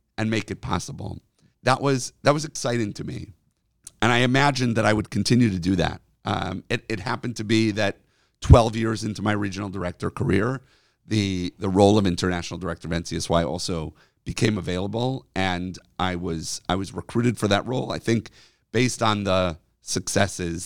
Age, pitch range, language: 40-59, 90-115 Hz, English